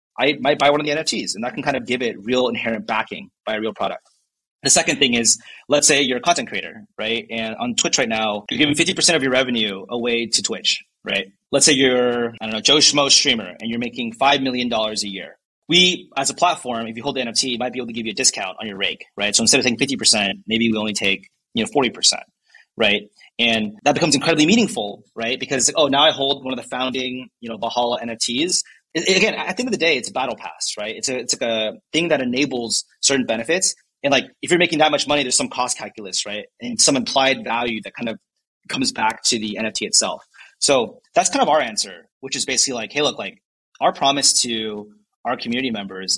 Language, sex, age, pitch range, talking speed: English, male, 30-49, 110-145 Hz, 235 wpm